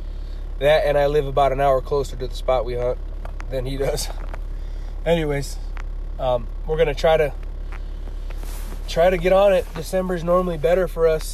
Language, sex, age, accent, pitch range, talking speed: English, male, 20-39, American, 90-145 Hz, 175 wpm